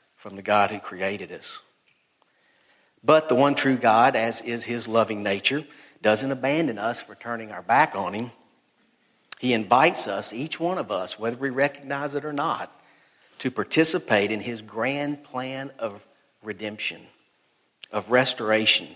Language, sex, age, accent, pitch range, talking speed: English, male, 50-69, American, 110-140 Hz, 150 wpm